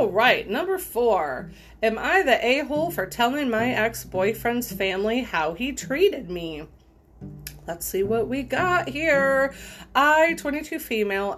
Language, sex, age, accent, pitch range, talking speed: English, female, 30-49, American, 185-245 Hz, 135 wpm